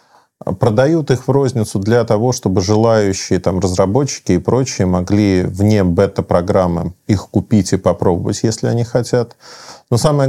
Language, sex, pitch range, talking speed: Russian, male, 95-120 Hz, 140 wpm